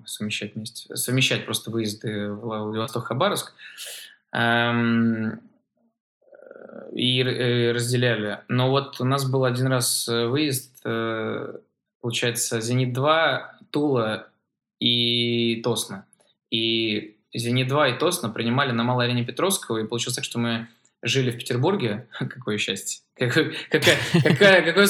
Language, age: Russian, 20-39